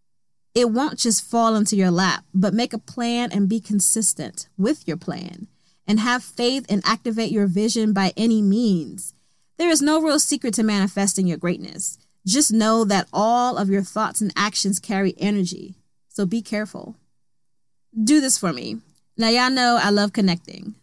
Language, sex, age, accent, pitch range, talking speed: English, female, 20-39, American, 190-240 Hz, 175 wpm